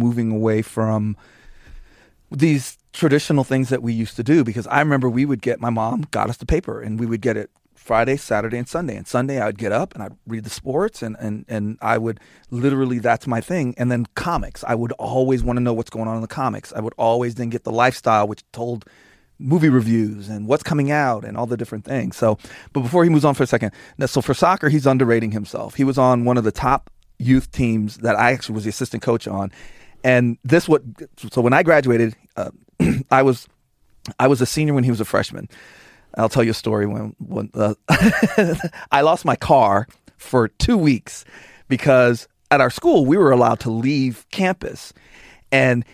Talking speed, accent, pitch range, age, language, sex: 215 wpm, American, 115-140 Hz, 30-49, English, male